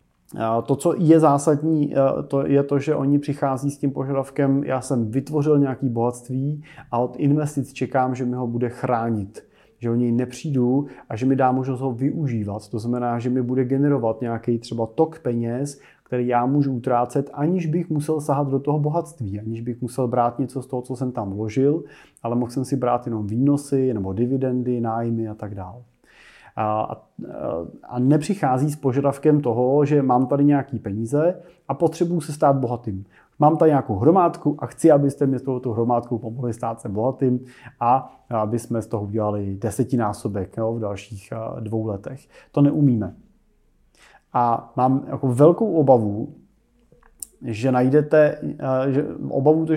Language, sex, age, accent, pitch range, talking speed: Czech, male, 30-49, native, 120-145 Hz, 170 wpm